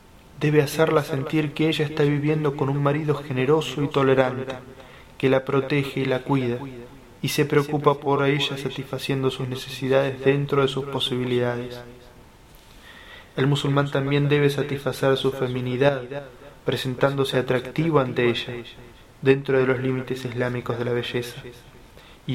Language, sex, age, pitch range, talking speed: Spanish, male, 20-39, 125-145 Hz, 135 wpm